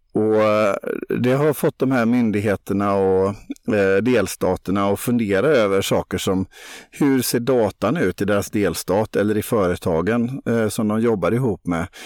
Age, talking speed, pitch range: 50-69, 145 wpm, 100-125 Hz